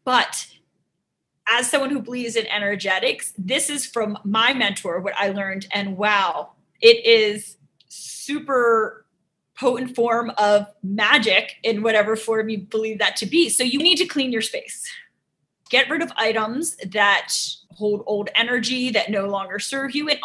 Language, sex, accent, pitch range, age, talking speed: English, female, American, 205-270 Hz, 30-49, 155 wpm